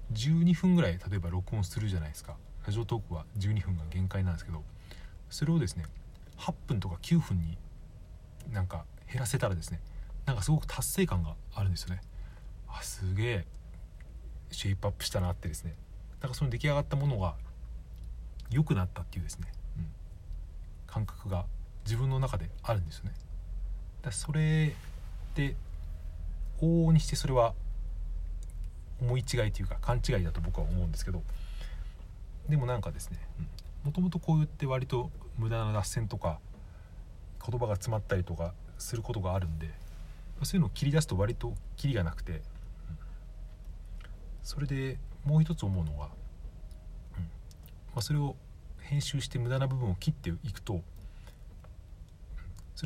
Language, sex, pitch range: Japanese, male, 85-120 Hz